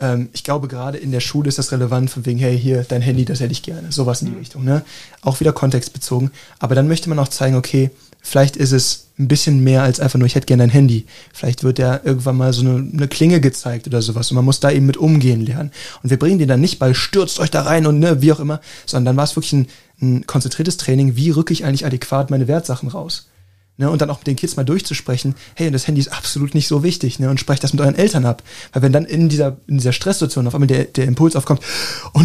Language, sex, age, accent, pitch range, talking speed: German, male, 20-39, German, 130-160 Hz, 265 wpm